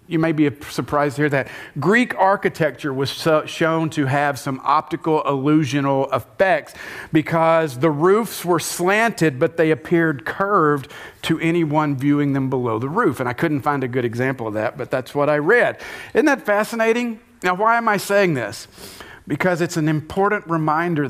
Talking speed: 175 wpm